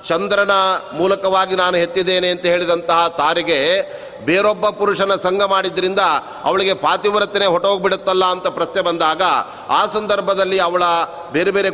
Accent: native